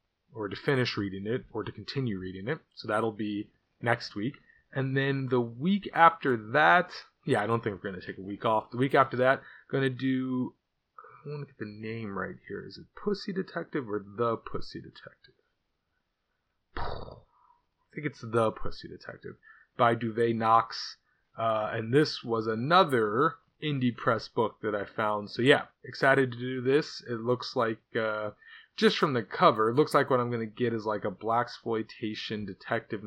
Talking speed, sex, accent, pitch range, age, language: 180 wpm, male, American, 110-145 Hz, 30-49, English